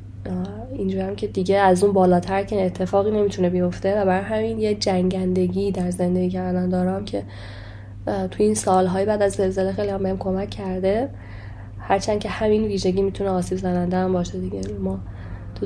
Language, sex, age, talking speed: Persian, female, 20-39, 170 wpm